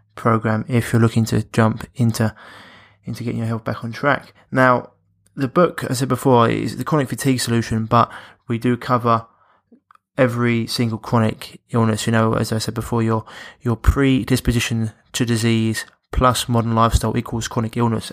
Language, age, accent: English, 20-39, British